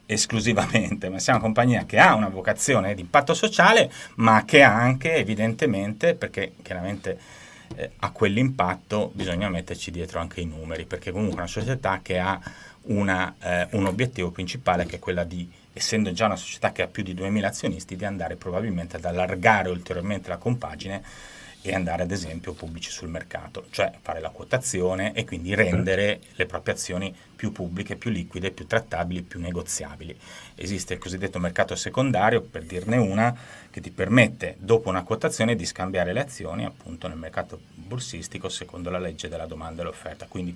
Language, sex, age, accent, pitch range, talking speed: Italian, male, 30-49, native, 90-115 Hz, 175 wpm